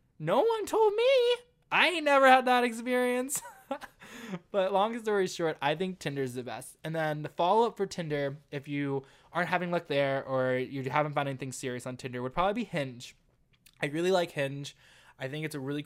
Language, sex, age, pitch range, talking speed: English, male, 20-39, 130-170 Hz, 200 wpm